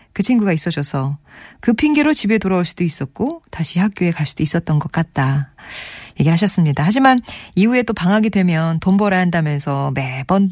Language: Korean